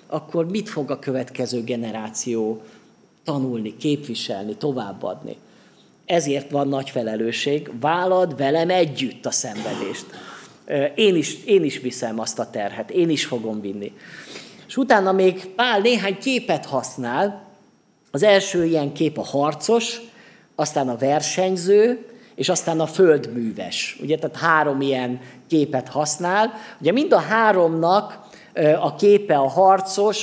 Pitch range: 140-195 Hz